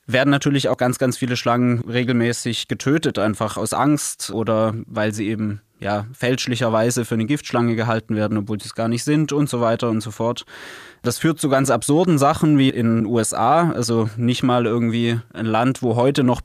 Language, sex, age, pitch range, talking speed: German, male, 20-39, 115-135 Hz, 195 wpm